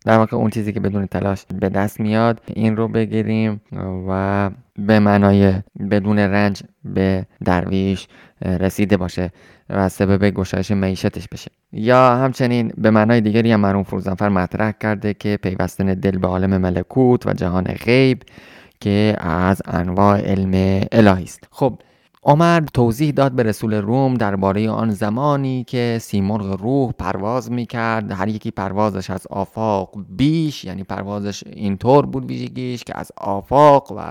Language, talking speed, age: Persian, 145 wpm, 20-39